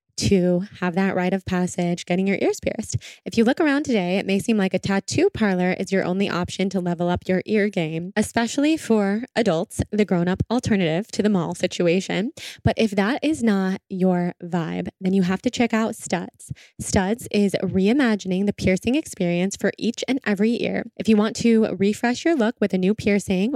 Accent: American